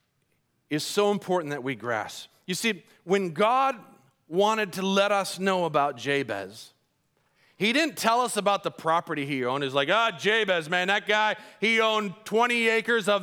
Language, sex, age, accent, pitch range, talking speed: English, male, 40-59, American, 140-190 Hz, 175 wpm